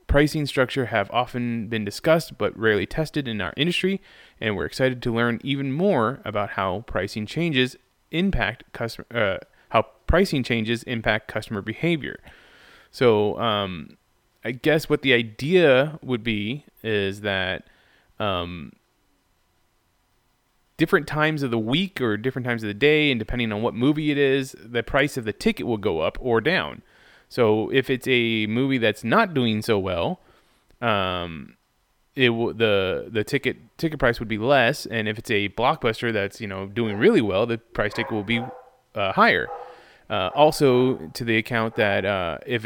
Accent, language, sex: American, English, male